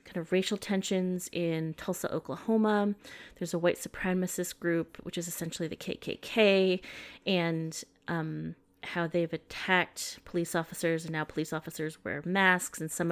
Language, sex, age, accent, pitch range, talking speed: English, female, 30-49, American, 155-185 Hz, 140 wpm